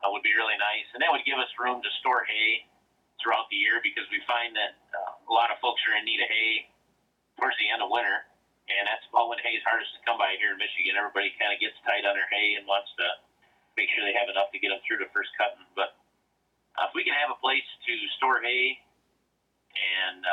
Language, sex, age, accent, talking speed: English, male, 40-59, American, 245 wpm